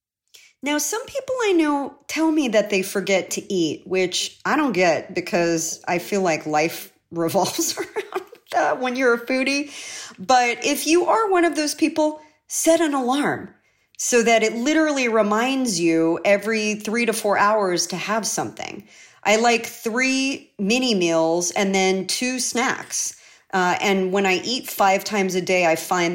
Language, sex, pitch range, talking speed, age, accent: English, female, 190-275 Hz, 170 wpm, 40-59, American